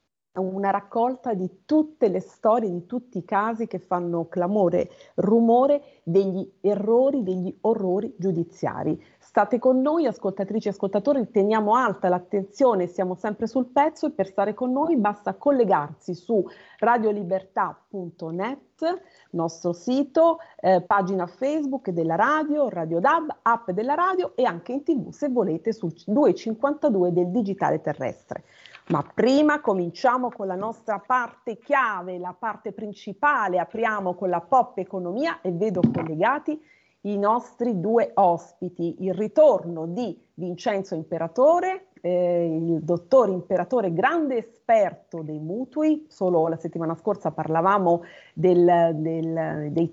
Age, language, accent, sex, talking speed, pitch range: 40-59, Italian, native, female, 130 wpm, 175-250 Hz